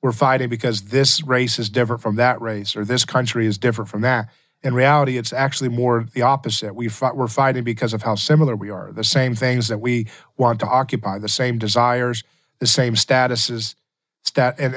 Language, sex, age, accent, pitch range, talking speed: English, male, 40-59, American, 120-145 Hz, 190 wpm